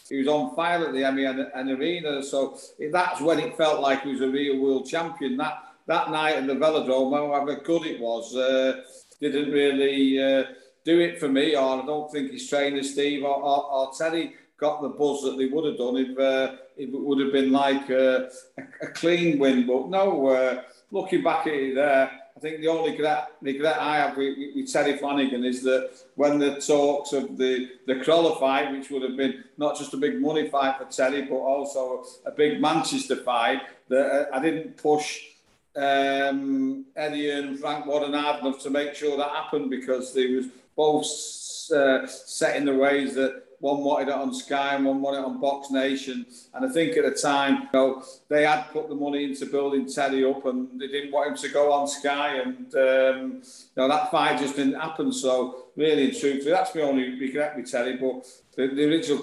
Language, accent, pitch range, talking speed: English, British, 130-150 Hz, 205 wpm